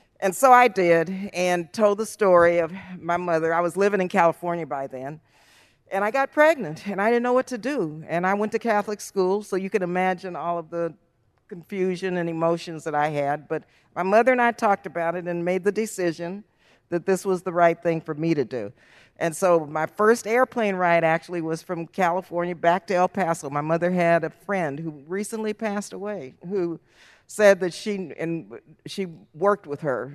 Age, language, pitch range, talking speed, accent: 50-69, English, 160-195 Hz, 205 wpm, American